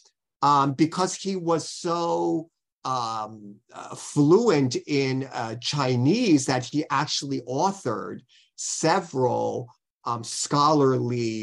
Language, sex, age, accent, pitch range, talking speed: English, male, 50-69, American, 125-170 Hz, 95 wpm